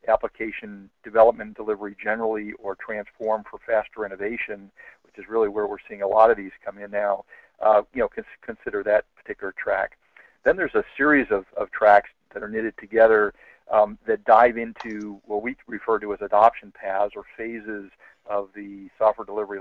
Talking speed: 180 wpm